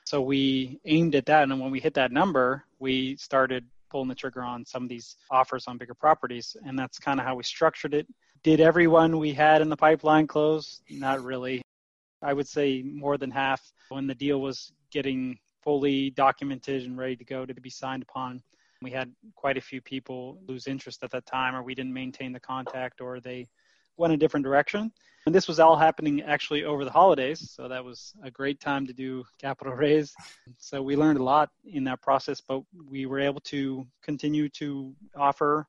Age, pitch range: 20-39, 130-150 Hz